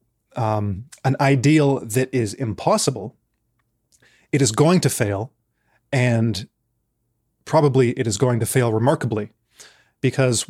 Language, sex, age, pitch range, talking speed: English, male, 30-49, 115-140 Hz, 115 wpm